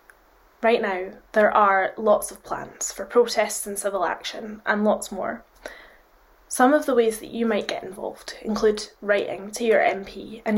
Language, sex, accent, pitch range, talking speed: English, female, British, 215-245 Hz, 170 wpm